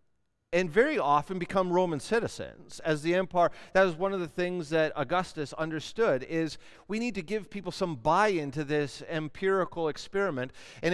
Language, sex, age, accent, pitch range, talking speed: English, male, 40-59, American, 155-210 Hz, 170 wpm